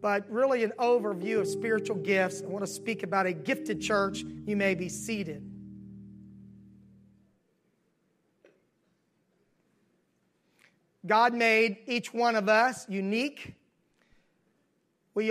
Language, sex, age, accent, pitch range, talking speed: English, male, 40-59, American, 195-235 Hz, 105 wpm